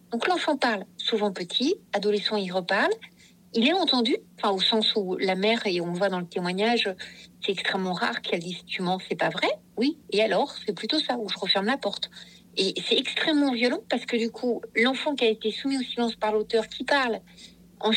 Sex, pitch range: female, 200-255 Hz